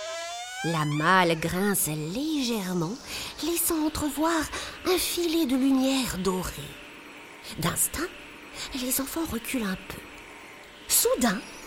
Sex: female